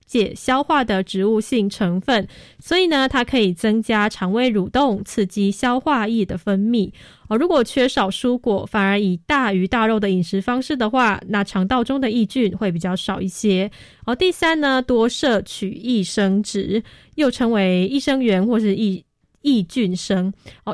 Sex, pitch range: female, 190-245 Hz